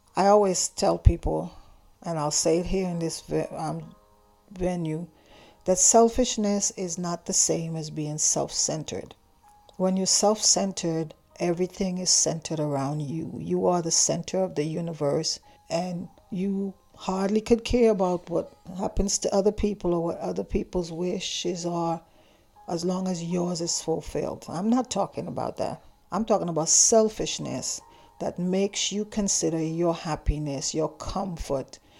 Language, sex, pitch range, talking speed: English, female, 160-190 Hz, 145 wpm